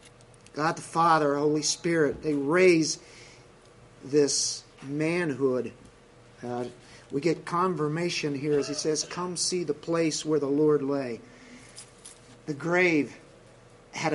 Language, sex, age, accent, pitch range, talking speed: English, male, 50-69, American, 140-175 Hz, 120 wpm